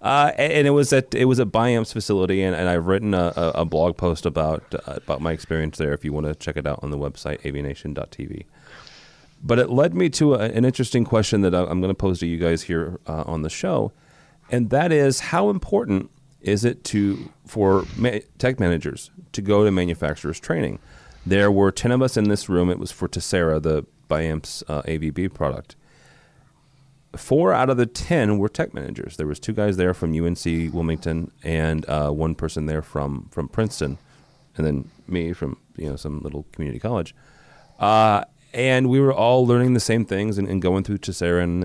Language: English